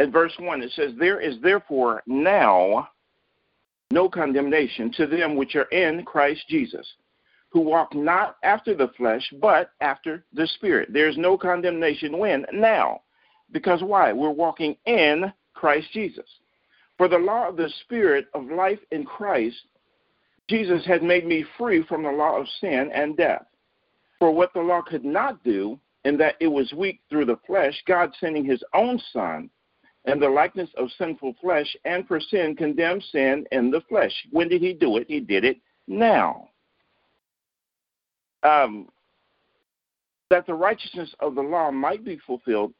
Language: English